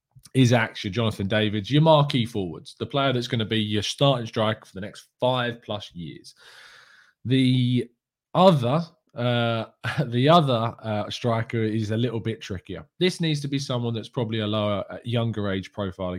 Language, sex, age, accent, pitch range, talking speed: English, male, 20-39, British, 105-125 Hz, 165 wpm